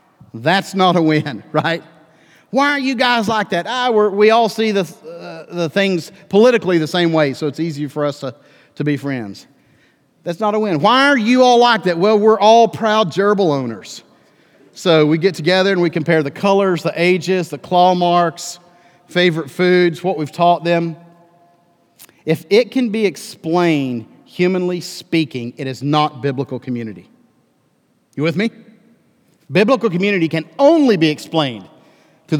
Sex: male